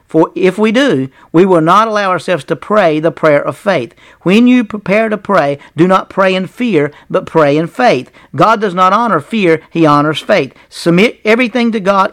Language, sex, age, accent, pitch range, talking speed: English, male, 50-69, American, 165-215 Hz, 205 wpm